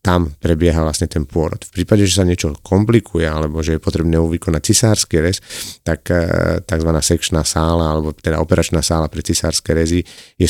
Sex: male